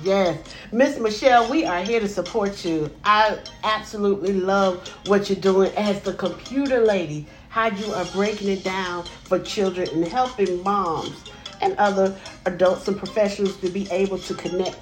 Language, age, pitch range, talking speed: English, 50-69, 170-200 Hz, 160 wpm